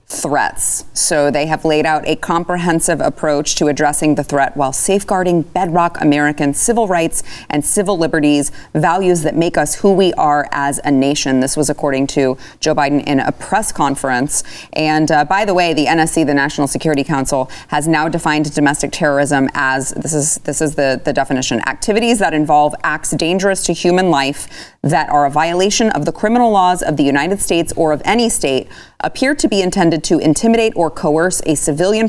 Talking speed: 185 wpm